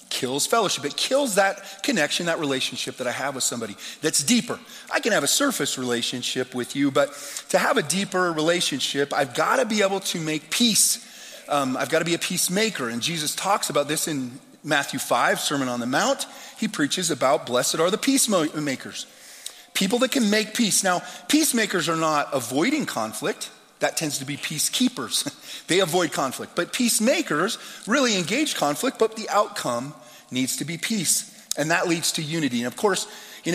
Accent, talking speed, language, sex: American, 185 wpm, English, male